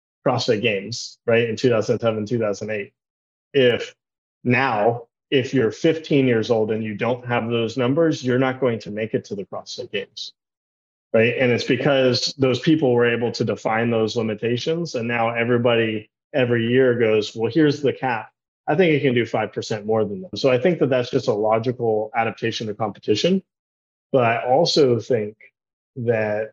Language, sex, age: English, male, 30-49